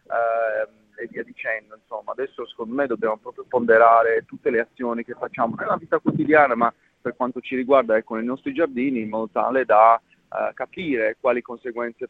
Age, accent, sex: 30-49, native, male